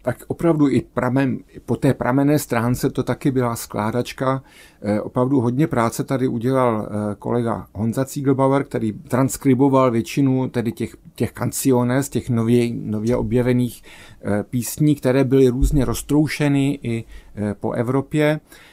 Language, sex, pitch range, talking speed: Czech, male, 115-140 Hz, 125 wpm